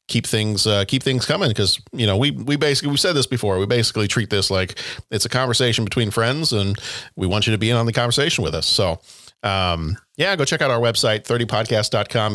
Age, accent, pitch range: 40-59, American, 105-125 Hz